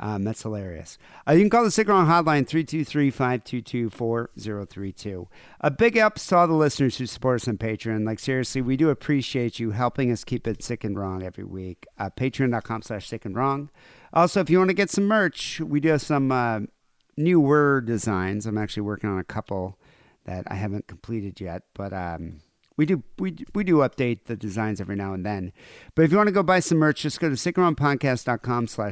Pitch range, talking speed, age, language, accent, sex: 105-150 Hz, 205 wpm, 50-69, English, American, male